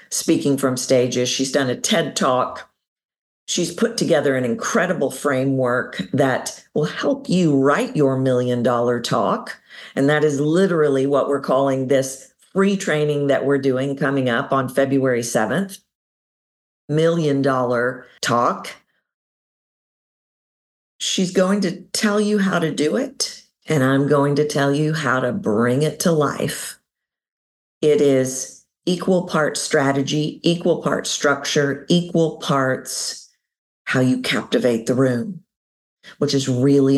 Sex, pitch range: female, 130-155 Hz